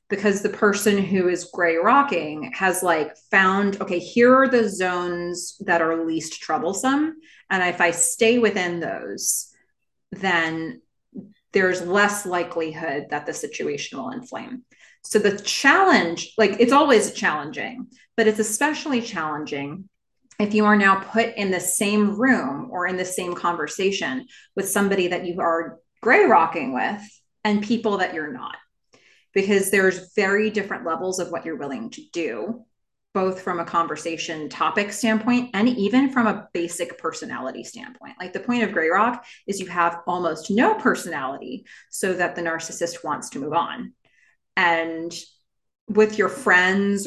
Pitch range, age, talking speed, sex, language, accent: 175-220 Hz, 30-49, 155 wpm, female, English, American